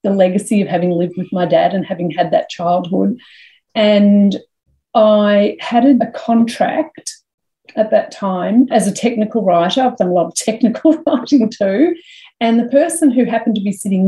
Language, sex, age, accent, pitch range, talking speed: English, female, 40-59, Australian, 190-280 Hz, 175 wpm